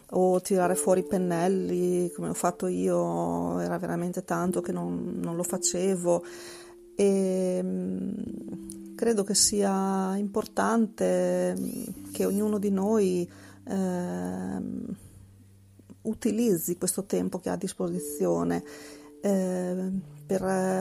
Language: Italian